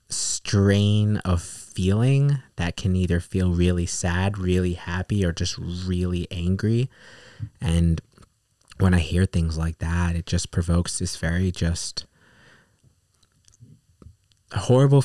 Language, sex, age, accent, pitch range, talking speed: English, male, 20-39, American, 85-100 Hz, 115 wpm